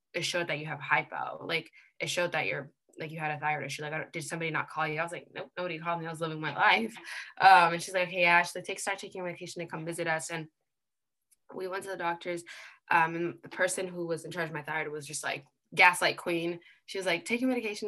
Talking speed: 250 wpm